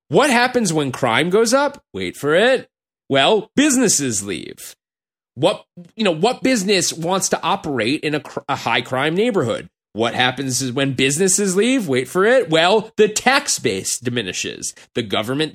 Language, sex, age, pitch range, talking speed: English, male, 30-49, 120-185 Hz, 165 wpm